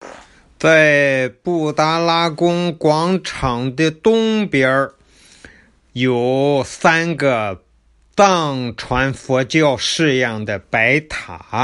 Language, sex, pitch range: Chinese, male, 130-170 Hz